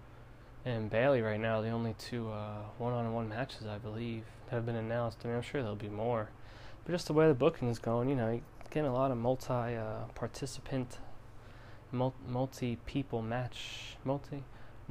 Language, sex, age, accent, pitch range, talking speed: English, male, 20-39, American, 110-125 Hz, 170 wpm